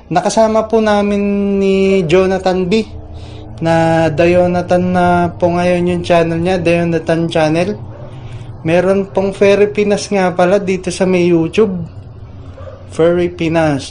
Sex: male